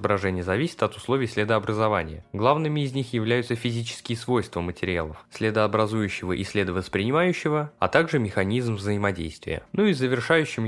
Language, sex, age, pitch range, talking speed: Russian, male, 20-39, 95-120 Hz, 125 wpm